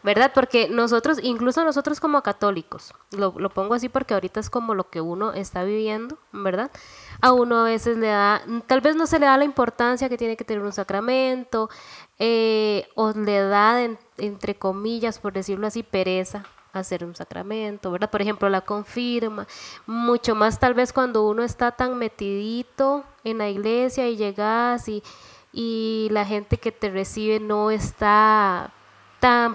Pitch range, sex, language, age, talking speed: 205-245 Hz, female, Spanish, 10-29, 170 wpm